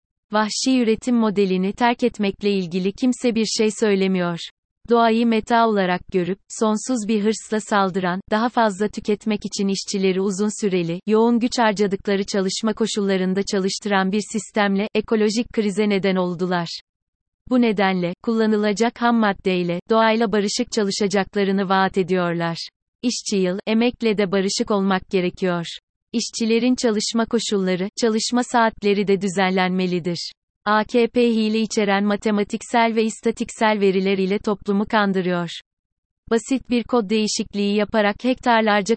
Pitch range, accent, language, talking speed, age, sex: 195-225 Hz, native, Turkish, 115 wpm, 30-49, female